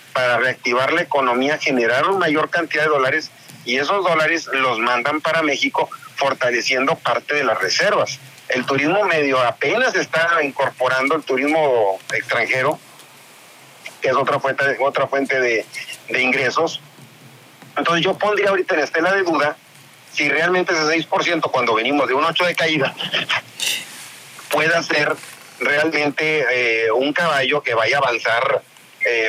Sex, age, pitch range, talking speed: male, 40-59, 130-165 Hz, 145 wpm